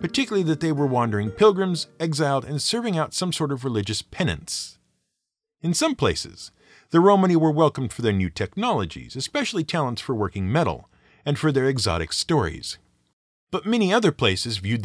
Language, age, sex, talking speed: English, 50-69, male, 165 wpm